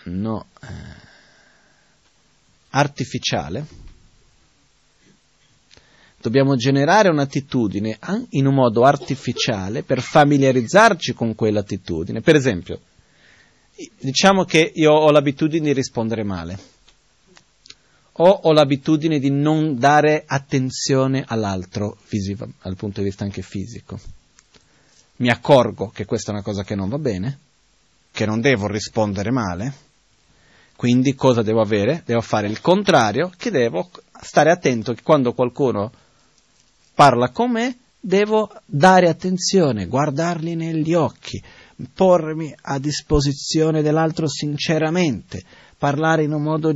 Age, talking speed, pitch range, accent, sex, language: 30-49, 115 wpm, 110-155 Hz, native, male, Italian